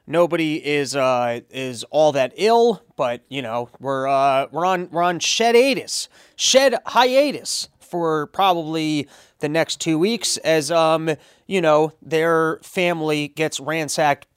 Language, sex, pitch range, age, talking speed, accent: English, male, 140-180 Hz, 30-49, 140 wpm, American